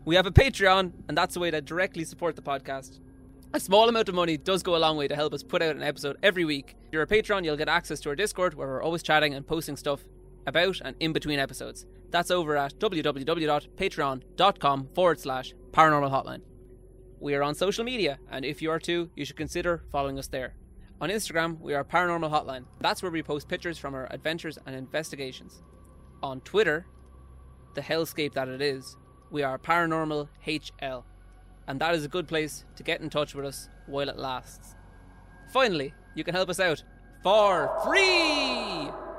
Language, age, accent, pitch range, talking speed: English, 20-39, Irish, 135-170 Hz, 195 wpm